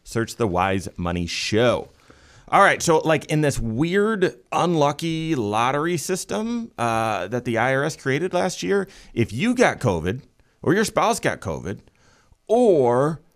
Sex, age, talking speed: male, 30-49, 145 wpm